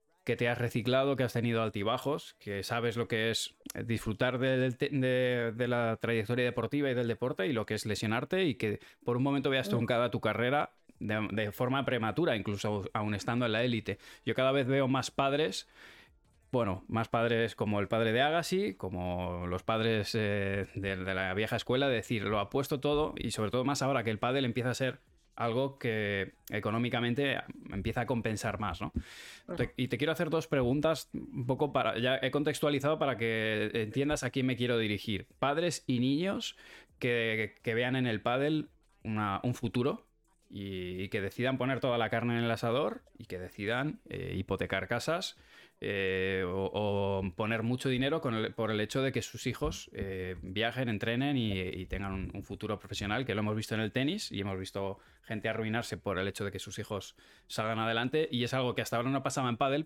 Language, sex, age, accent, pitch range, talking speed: Spanish, male, 20-39, Spanish, 100-130 Hz, 205 wpm